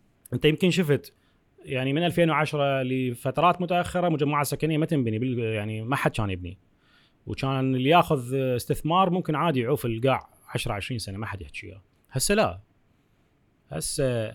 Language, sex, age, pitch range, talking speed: Arabic, male, 30-49, 120-160 Hz, 140 wpm